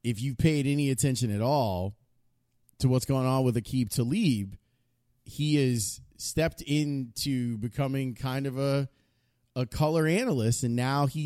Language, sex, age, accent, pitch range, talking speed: English, male, 30-49, American, 110-135 Hz, 150 wpm